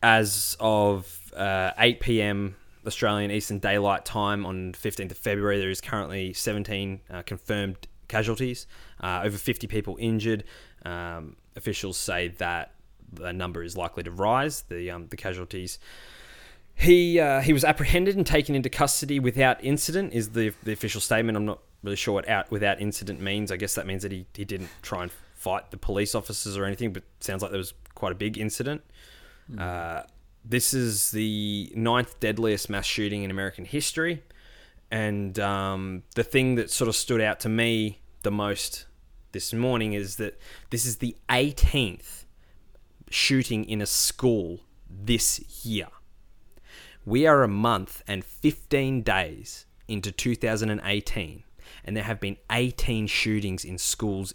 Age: 20-39